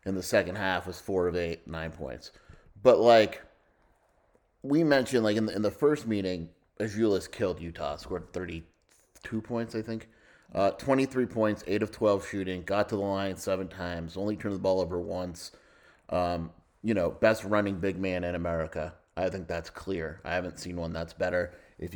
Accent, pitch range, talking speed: American, 85-100 Hz, 185 wpm